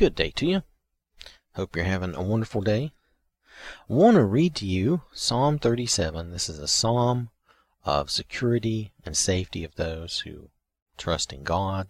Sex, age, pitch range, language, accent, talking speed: male, 40-59, 80-115 Hz, English, American, 160 wpm